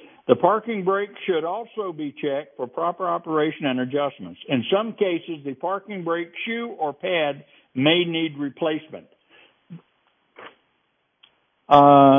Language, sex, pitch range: English, male, 145-190 Hz